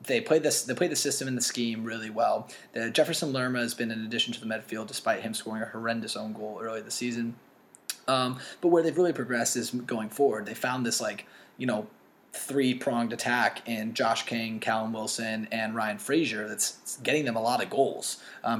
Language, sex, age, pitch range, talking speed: English, male, 20-39, 110-135 Hz, 215 wpm